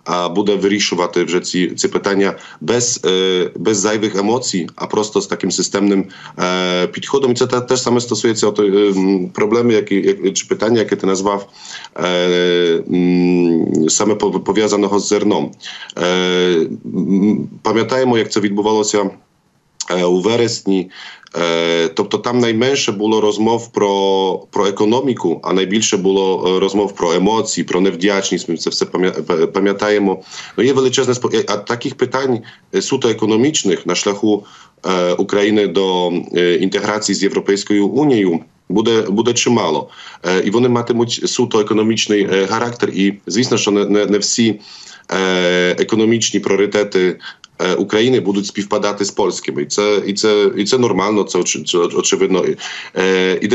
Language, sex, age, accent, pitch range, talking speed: Ukrainian, male, 40-59, Polish, 95-110 Hz, 125 wpm